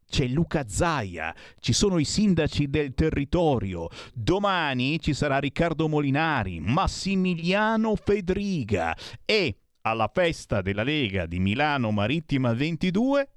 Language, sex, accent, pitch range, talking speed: Italian, male, native, 100-155 Hz, 110 wpm